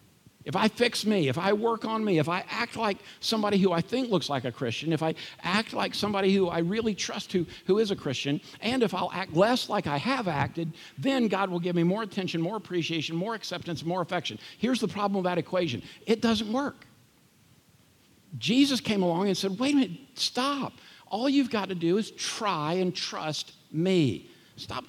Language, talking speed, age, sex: English, 205 wpm, 50-69, male